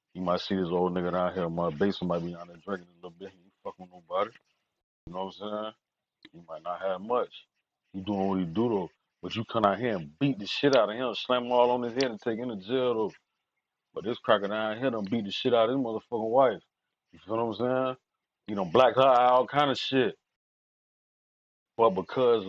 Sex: male